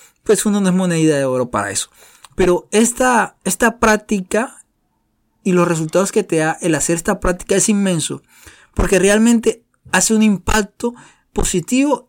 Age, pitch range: 20-39, 170-215 Hz